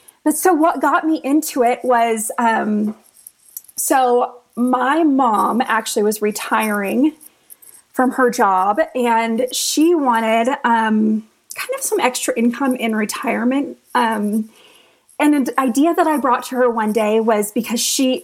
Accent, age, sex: American, 30-49, female